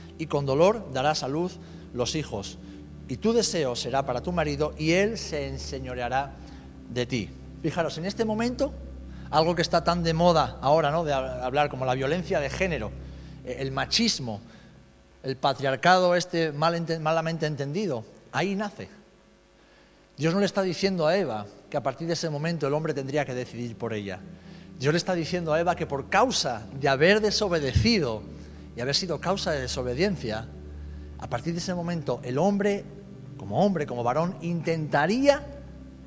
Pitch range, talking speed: 115-170 Hz, 170 wpm